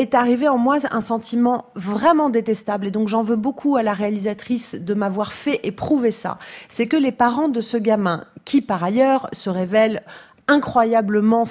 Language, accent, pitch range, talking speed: French, French, 200-250 Hz, 175 wpm